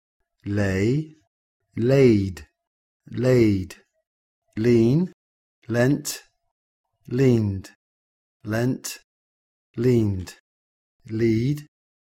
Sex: male